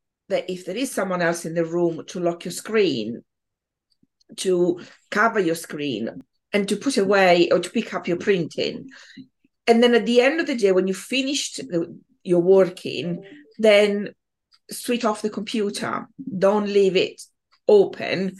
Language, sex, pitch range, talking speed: English, female, 180-235 Hz, 165 wpm